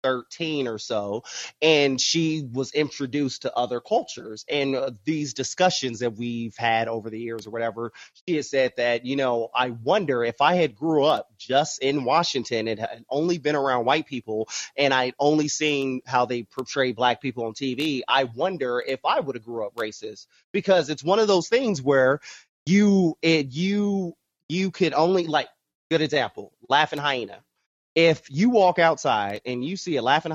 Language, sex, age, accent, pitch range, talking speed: English, male, 30-49, American, 130-180 Hz, 180 wpm